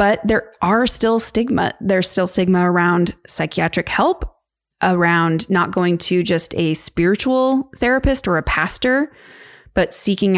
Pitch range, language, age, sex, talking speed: 175-215 Hz, English, 20-39, female, 140 wpm